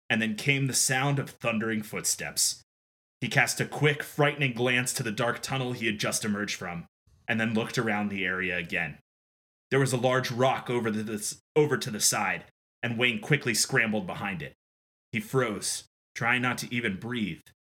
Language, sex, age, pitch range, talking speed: English, male, 20-39, 110-135 Hz, 180 wpm